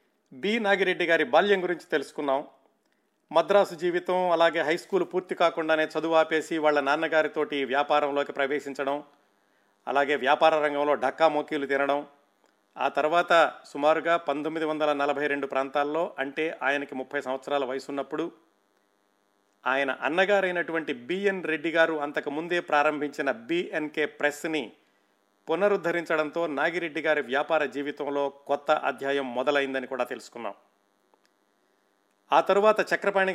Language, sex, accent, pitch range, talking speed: Telugu, male, native, 135-170 Hz, 105 wpm